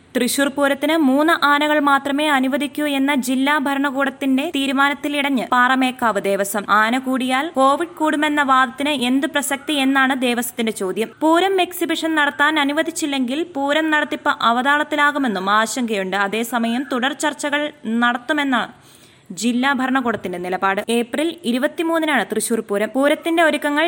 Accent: native